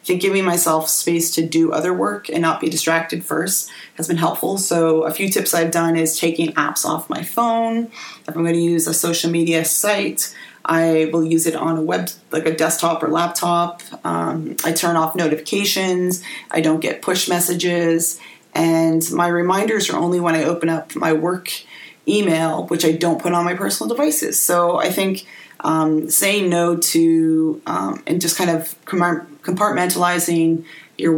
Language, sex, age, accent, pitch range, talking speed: English, female, 30-49, American, 165-180 Hz, 180 wpm